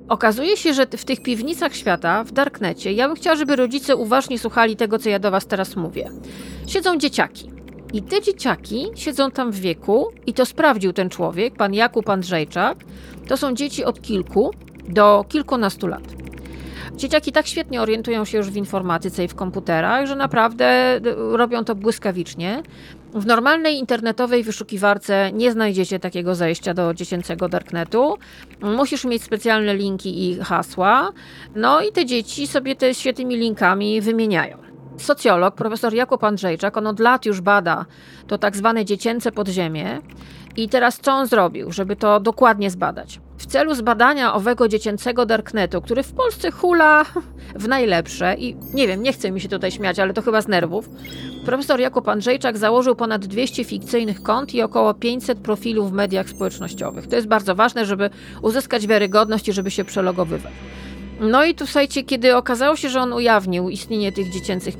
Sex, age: female, 40-59